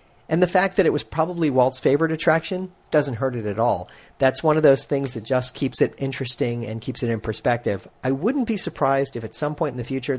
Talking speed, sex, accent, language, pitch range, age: 240 wpm, male, American, English, 120-160 Hz, 40-59